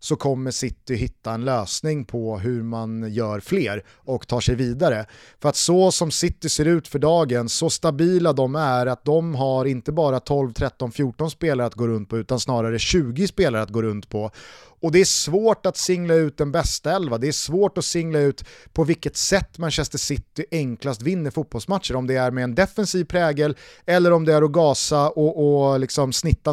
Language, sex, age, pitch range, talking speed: Swedish, male, 30-49, 125-170 Hz, 205 wpm